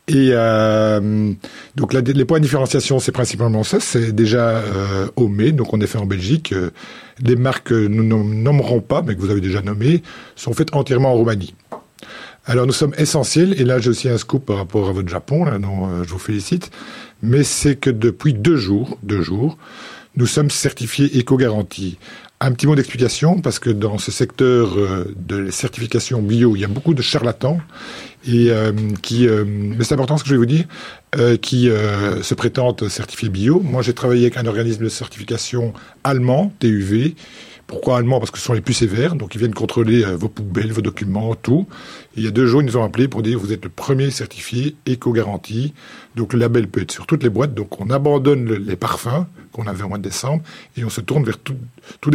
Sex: male